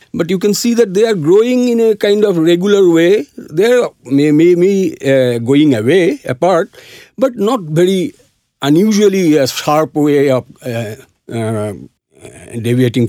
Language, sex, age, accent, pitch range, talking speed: English, male, 50-69, Indian, 140-210 Hz, 140 wpm